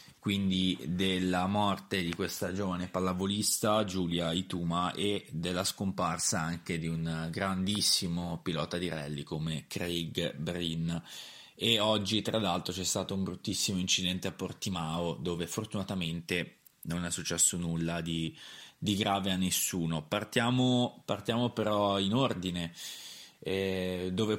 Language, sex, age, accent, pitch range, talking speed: Italian, male, 20-39, native, 85-100 Hz, 125 wpm